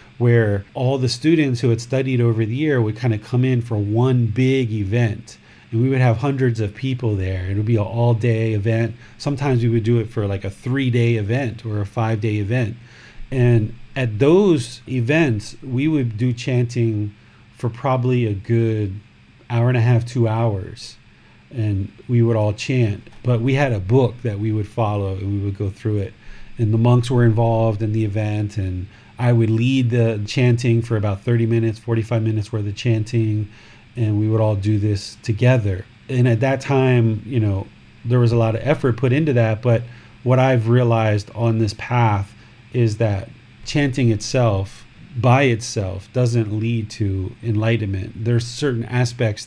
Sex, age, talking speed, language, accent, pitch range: male, 30-49, 180 wpm, English, American, 110-125 Hz